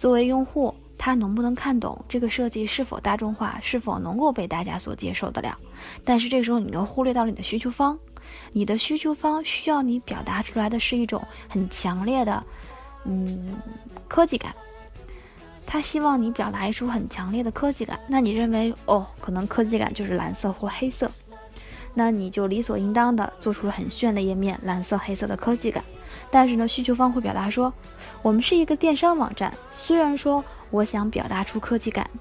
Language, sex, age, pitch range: Chinese, female, 20-39, 205-255 Hz